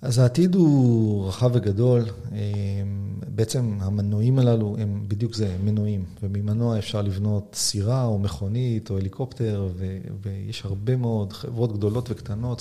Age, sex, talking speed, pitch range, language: 30-49, male, 135 wpm, 100-120 Hz, Hebrew